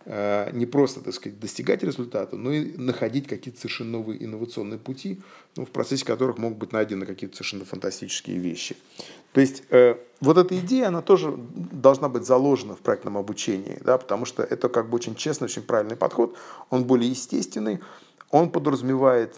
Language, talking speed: Russian, 170 wpm